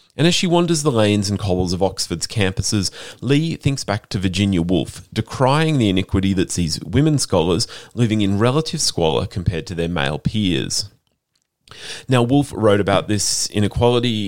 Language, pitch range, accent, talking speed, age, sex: English, 90-125 Hz, Australian, 165 wpm, 30-49, male